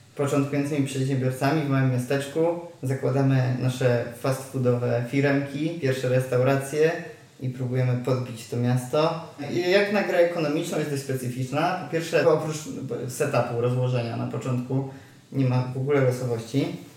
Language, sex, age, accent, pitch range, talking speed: Polish, male, 20-39, native, 125-145 Hz, 125 wpm